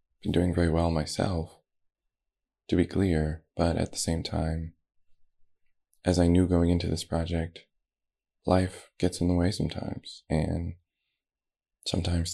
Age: 20-39